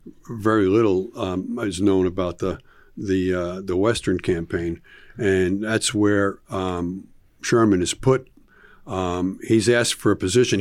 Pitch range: 95-115 Hz